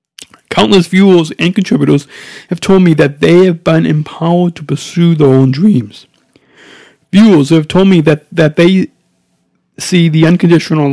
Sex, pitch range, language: male, 145-180 Hz, English